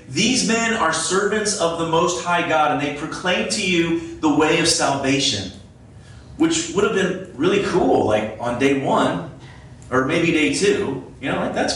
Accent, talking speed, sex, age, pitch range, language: American, 185 wpm, male, 30-49, 115-155 Hz, English